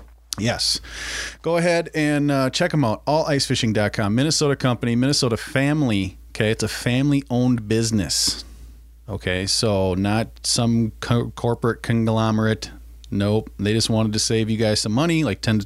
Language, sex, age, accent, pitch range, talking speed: English, male, 30-49, American, 95-125 Hz, 145 wpm